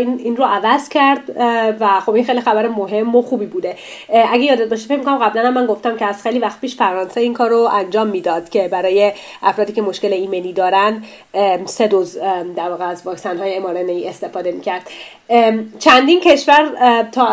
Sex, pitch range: female, 200-235 Hz